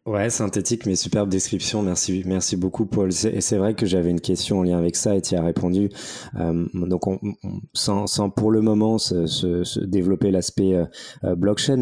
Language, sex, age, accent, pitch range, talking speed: French, male, 20-39, French, 90-105 Hz, 210 wpm